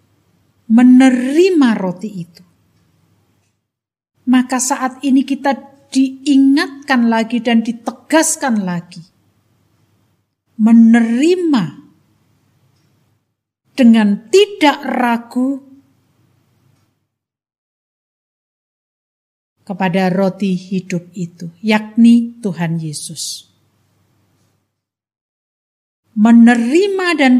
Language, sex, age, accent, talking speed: Indonesian, female, 50-69, native, 55 wpm